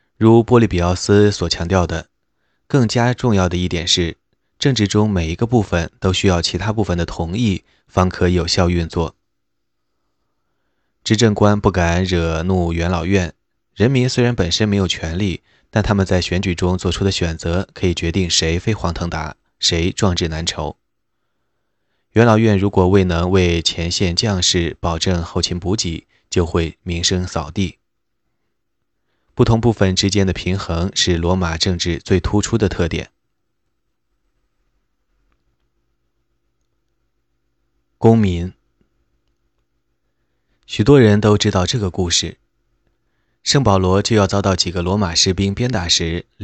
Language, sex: Chinese, male